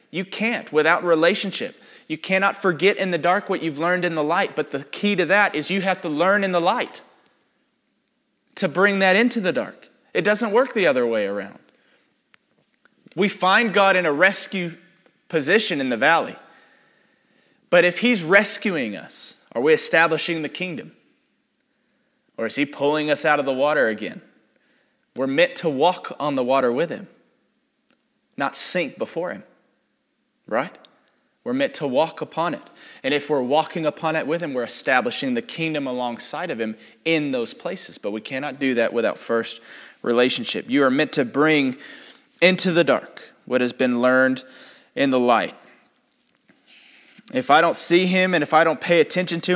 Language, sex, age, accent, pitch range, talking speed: English, male, 30-49, American, 145-200 Hz, 175 wpm